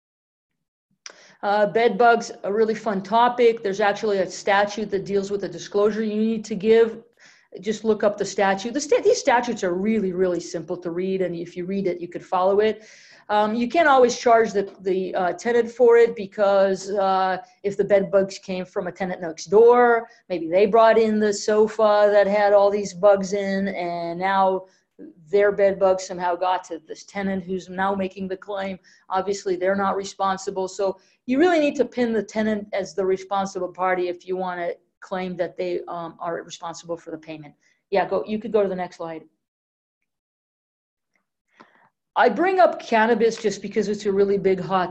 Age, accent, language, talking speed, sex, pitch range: 40-59, American, English, 190 wpm, female, 185-210 Hz